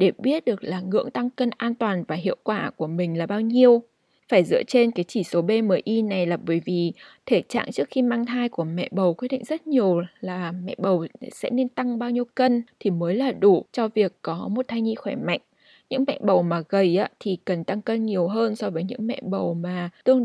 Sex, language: female, Vietnamese